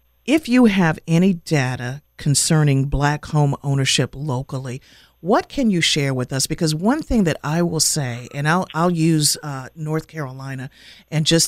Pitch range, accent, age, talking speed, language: 125-160 Hz, American, 50-69, 165 wpm, English